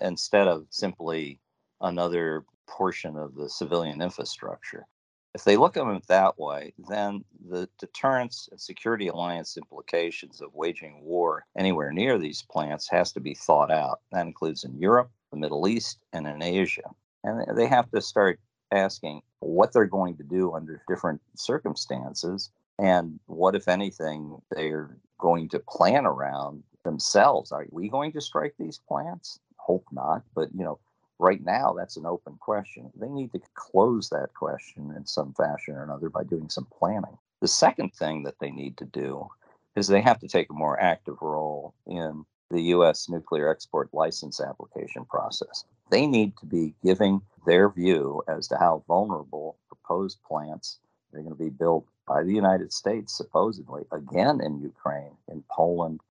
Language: English